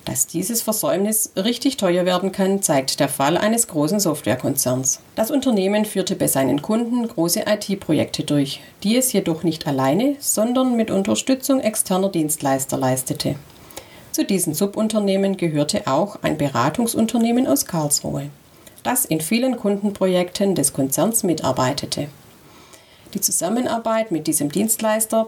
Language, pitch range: German, 150-215 Hz